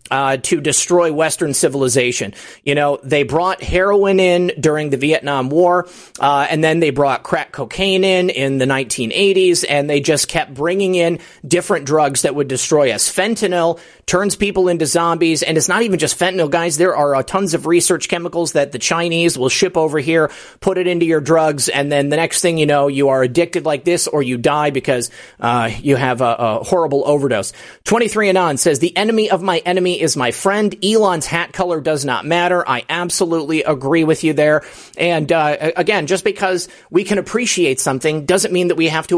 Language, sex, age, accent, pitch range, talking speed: English, male, 30-49, American, 145-180 Hz, 200 wpm